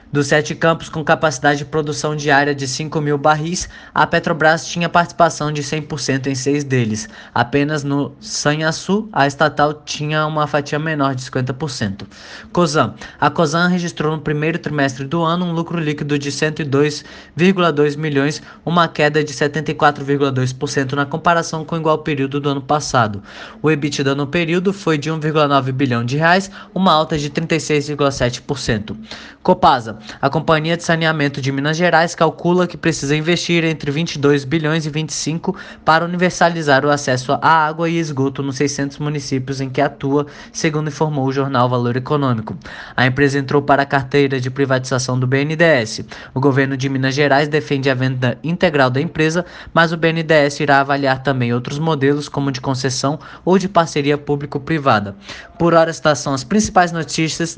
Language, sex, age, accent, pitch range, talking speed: Portuguese, male, 20-39, Brazilian, 140-160 Hz, 160 wpm